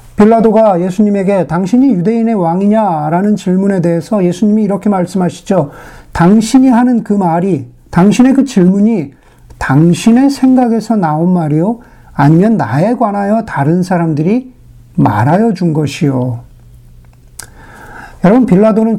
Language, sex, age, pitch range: Korean, male, 50-69, 155-215 Hz